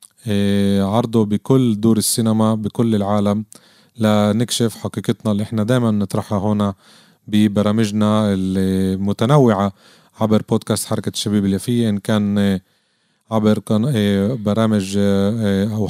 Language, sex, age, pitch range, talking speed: Arabic, male, 30-49, 100-115 Hz, 95 wpm